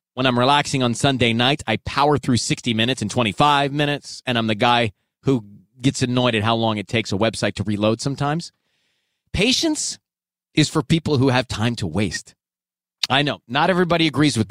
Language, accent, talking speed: English, American, 190 wpm